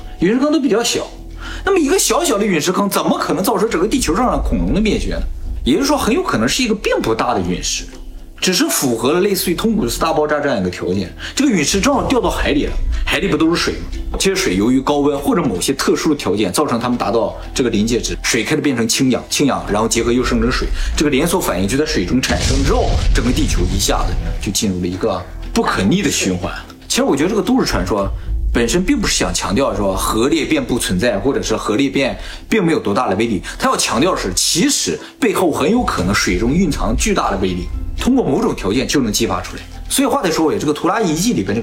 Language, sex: Chinese, male